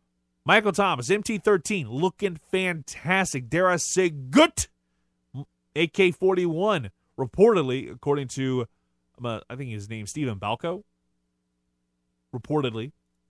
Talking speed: 90 wpm